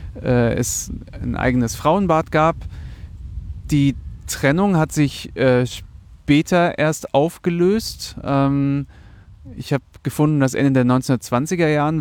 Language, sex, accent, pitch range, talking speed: German, male, German, 120-150 Hz, 105 wpm